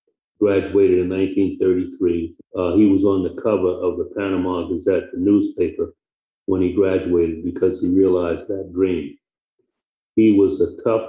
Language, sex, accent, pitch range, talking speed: English, male, American, 90-105 Hz, 140 wpm